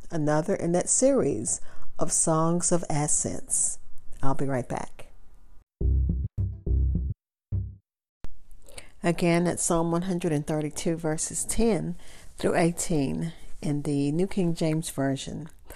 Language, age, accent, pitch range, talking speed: English, 50-69, American, 140-195 Hz, 100 wpm